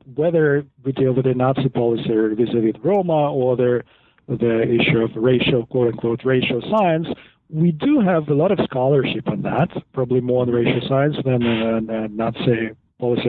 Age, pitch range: 40-59, 120-165 Hz